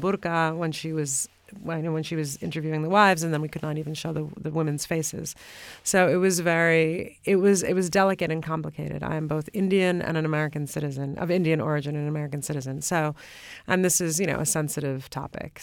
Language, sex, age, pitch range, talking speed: English, female, 30-49, 150-170 Hz, 220 wpm